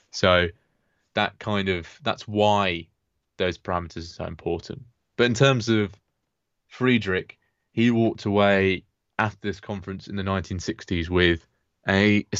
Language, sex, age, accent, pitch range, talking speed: English, male, 20-39, British, 95-110 Hz, 135 wpm